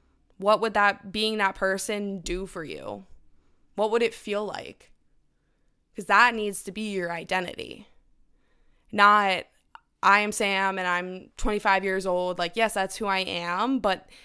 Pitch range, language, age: 190-220 Hz, English, 20-39